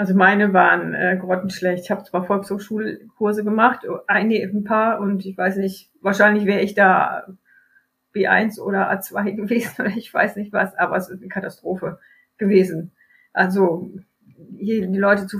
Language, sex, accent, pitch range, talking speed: German, female, German, 190-220 Hz, 160 wpm